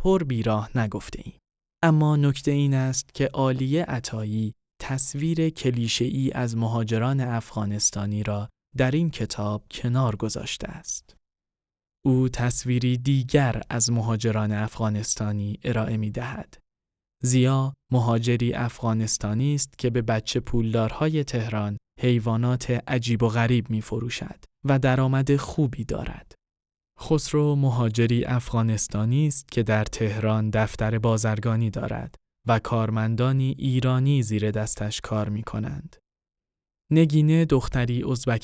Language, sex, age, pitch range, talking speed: Persian, male, 20-39, 110-135 Hz, 110 wpm